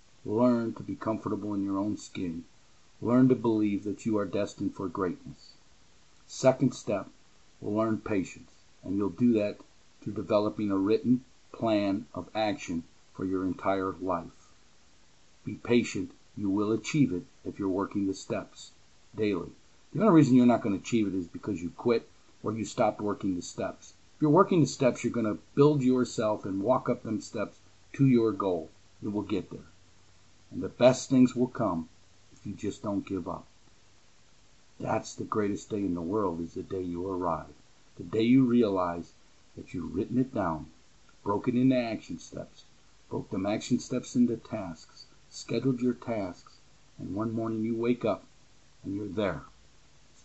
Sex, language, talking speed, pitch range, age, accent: male, English, 175 wpm, 100-125 Hz, 50-69, American